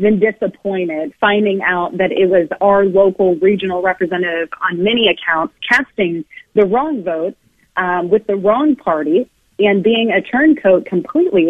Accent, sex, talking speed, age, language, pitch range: American, female, 145 wpm, 30-49, English, 185-235 Hz